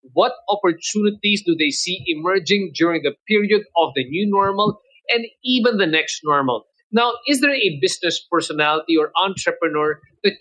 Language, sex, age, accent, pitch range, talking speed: English, male, 50-69, Filipino, 175-220 Hz, 155 wpm